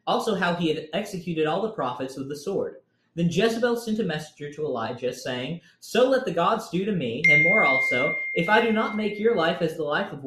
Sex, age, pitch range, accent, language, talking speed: male, 20-39, 145-225 Hz, American, English, 235 wpm